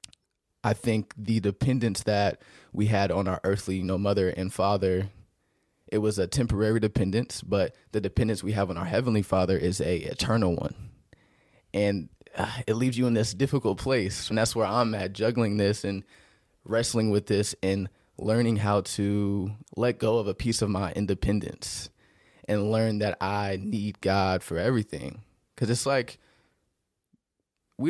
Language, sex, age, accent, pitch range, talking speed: English, male, 20-39, American, 100-115 Hz, 165 wpm